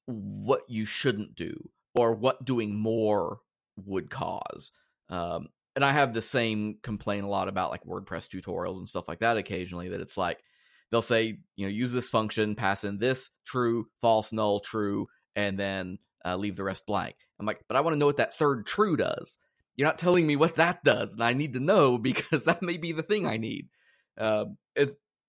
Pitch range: 95-120 Hz